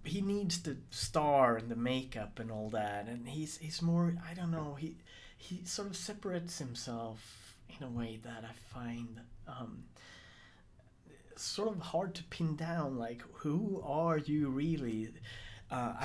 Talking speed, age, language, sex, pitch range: 155 wpm, 30-49, English, male, 115-150 Hz